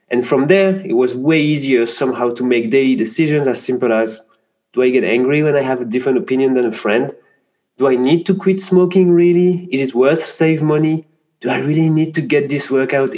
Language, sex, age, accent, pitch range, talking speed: English, male, 30-49, French, 120-160 Hz, 220 wpm